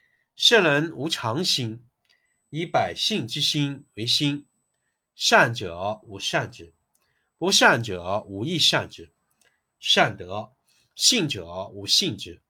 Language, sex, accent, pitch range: Chinese, male, native, 110-155 Hz